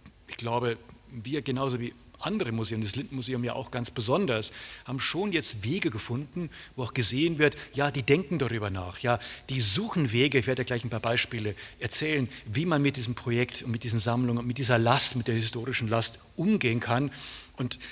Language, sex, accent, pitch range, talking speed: German, male, German, 110-135 Hz, 195 wpm